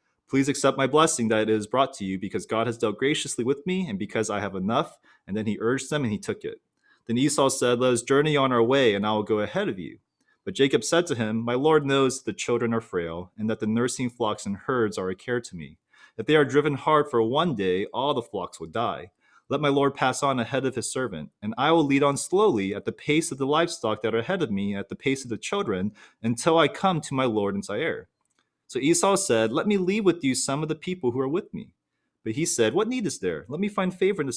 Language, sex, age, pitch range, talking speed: English, male, 30-49, 110-155 Hz, 265 wpm